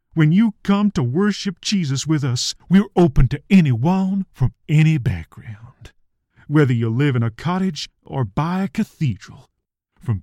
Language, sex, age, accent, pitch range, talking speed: English, male, 40-59, American, 115-175 Hz, 155 wpm